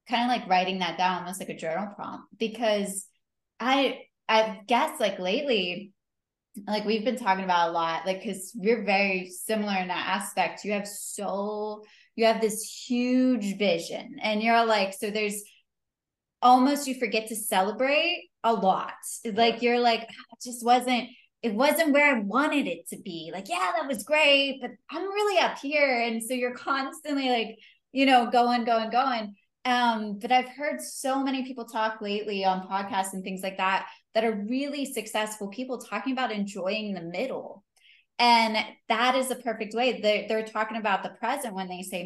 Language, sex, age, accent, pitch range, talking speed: English, female, 20-39, American, 200-250 Hz, 180 wpm